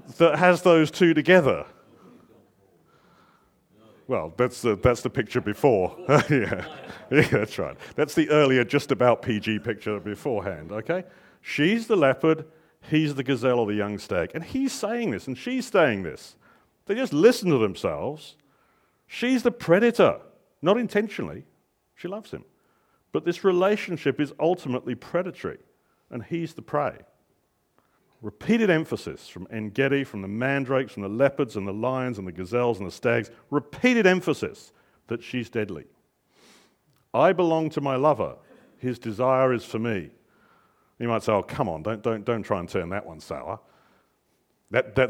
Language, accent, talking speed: English, British, 155 wpm